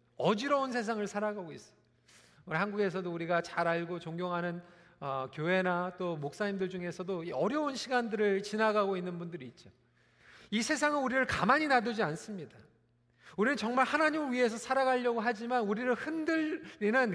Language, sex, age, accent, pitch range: Korean, male, 40-59, native, 165-245 Hz